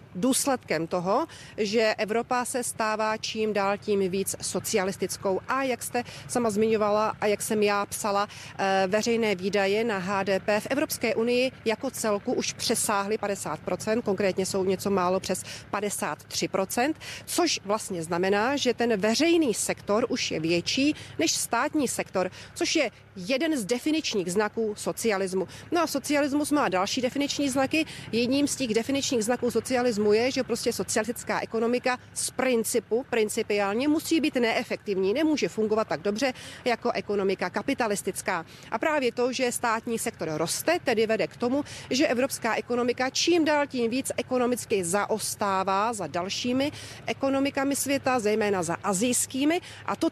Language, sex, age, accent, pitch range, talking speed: Czech, female, 40-59, native, 200-260 Hz, 140 wpm